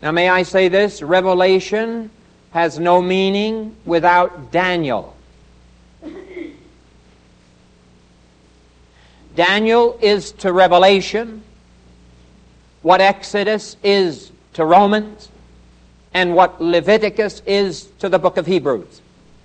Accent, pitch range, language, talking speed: American, 130-200 Hz, English, 90 wpm